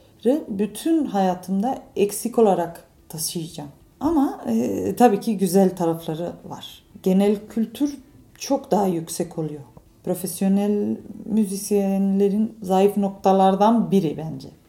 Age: 30-49